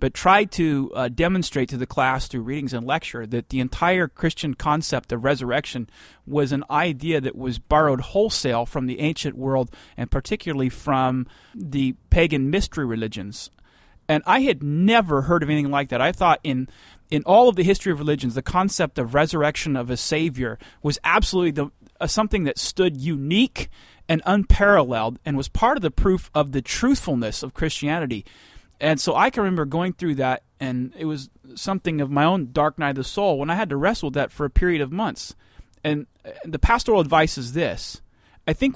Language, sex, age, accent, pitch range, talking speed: English, male, 30-49, American, 130-175 Hz, 190 wpm